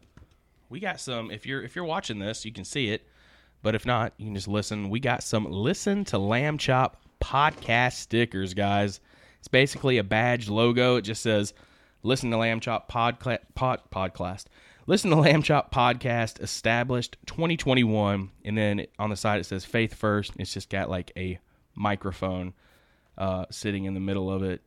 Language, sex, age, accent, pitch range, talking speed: English, male, 20-39, American, 100-130 Hz, 180 wpm